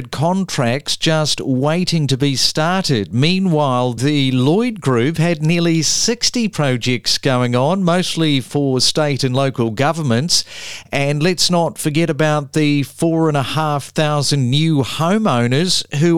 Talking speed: 135 wpm